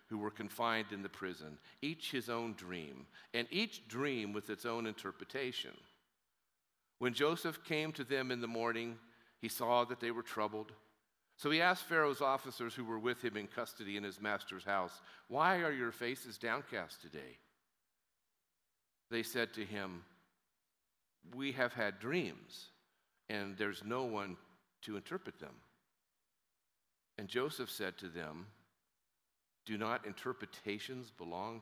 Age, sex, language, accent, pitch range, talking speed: 50-69, male, English, American, 95-120 Hz, 145 wpm